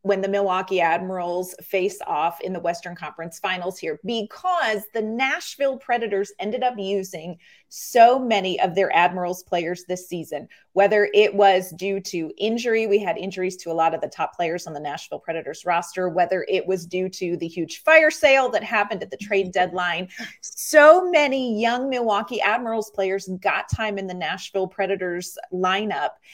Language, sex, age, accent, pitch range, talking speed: English, female, 30-49, American, 185-235 Hz, 175 wpm